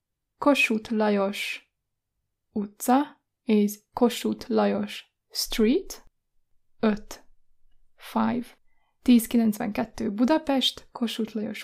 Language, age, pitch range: Hungarian, 10-29, 215-250 Hz